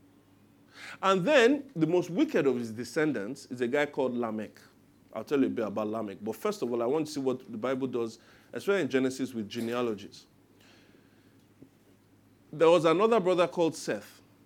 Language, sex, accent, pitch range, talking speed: English, male, Nigerian, 120-195 Hz, 180 wpm